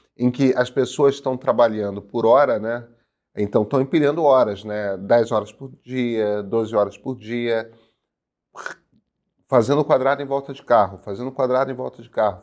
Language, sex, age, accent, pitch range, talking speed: Portuguese, male, 30-49, Brazilian, 110-140 Hz, 165 wpm